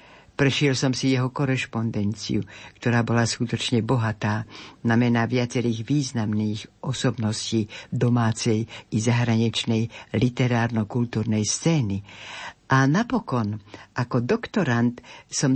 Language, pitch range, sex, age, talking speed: Slovak, 115-155 Hz, female, 60-79, 90 wpm